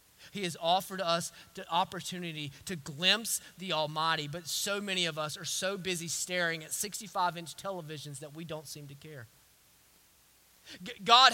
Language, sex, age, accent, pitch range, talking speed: English, male, 30-49, American, 145-230 Hz, 155 wpm